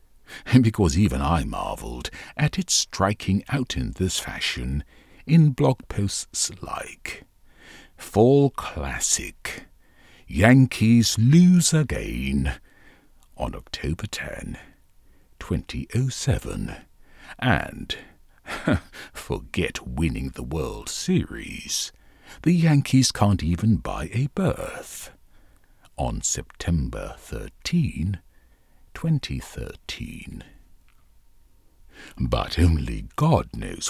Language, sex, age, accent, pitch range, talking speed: English, male, 50-69, British, 80-130 Hz, 80 wpm